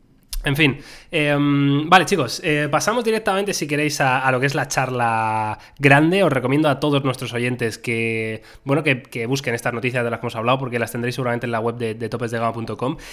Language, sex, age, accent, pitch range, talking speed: Spanish, male, 20-39, Spanish, 120-150 Hz, 210 wpm